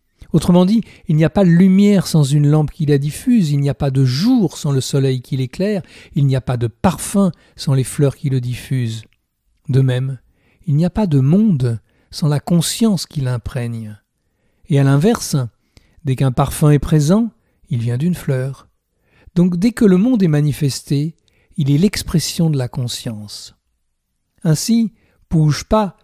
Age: 60-79